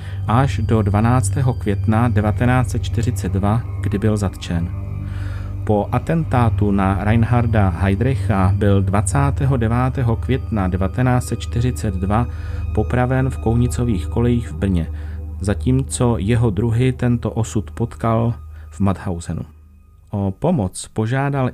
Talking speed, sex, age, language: 95 wpm, male, 40-59, Czech